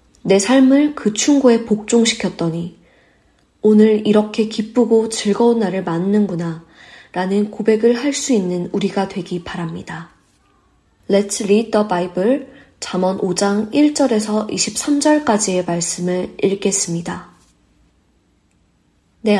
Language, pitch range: Korean, 180-220 Hz